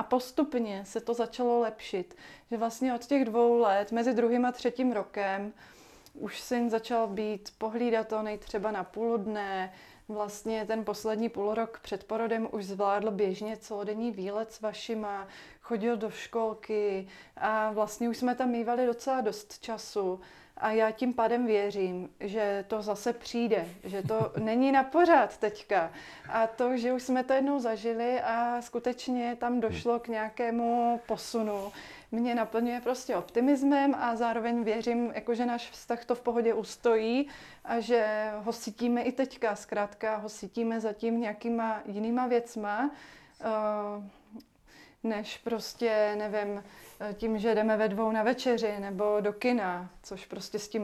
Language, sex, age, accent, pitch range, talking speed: Czech, female, 30-49, native, 210-235 Hz, 150 wpm